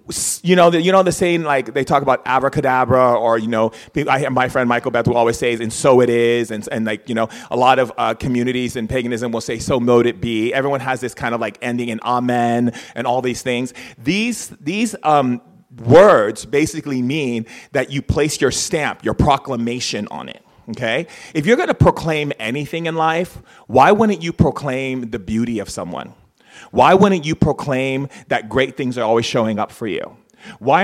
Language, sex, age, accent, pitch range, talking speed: English, male, 30-49, American, 120-145 Hz, 200 wpm